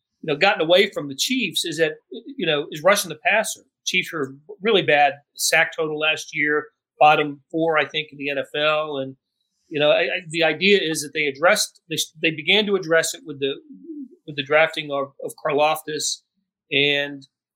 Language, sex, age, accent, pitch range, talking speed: English, male, 40-59, American, 150-185 Hz, 190 wpm